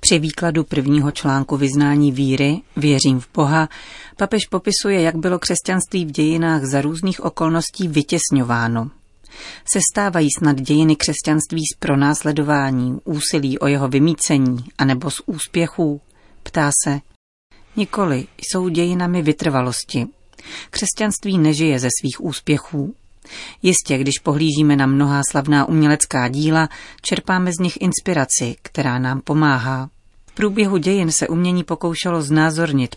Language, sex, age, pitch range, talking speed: Czech, female, 40-59, 140-170 Hz, 125 wpm